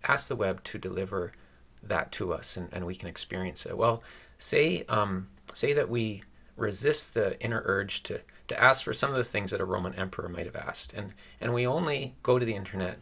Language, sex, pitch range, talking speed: English, male, 95-130 Hz, 215 wpm